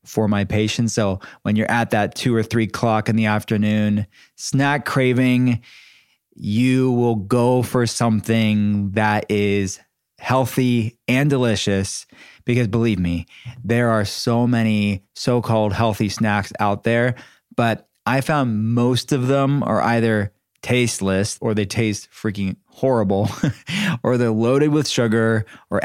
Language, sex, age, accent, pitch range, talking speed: English, male, 20-39, American, 105-125 Hz, 135 wpm